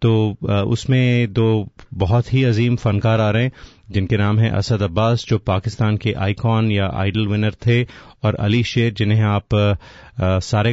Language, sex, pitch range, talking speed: Hindi, male, 100-120 Hz, 160 wpm